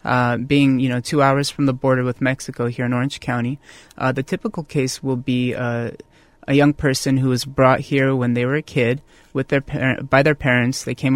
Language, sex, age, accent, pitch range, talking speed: English, male, 20-39, American, 120-140 Hz, 225 wpm